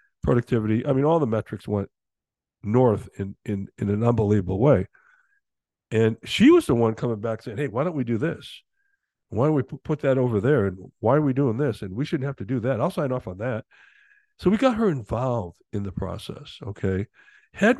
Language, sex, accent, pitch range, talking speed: English, male, American, 105-150 Hz, 210 wpm